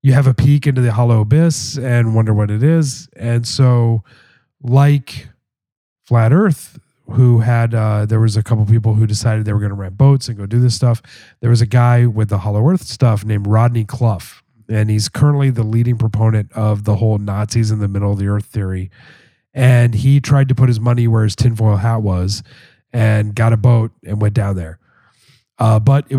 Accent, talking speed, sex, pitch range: American, 210 wpm, male, 110-130 Hz